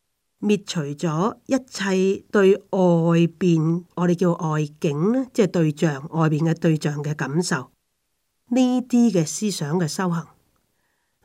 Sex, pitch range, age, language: female, 165-230 Hz, 30-49, Chinese